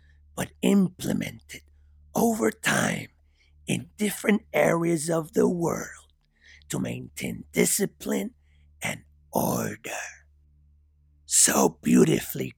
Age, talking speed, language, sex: 50-69, 80 wpm, English, male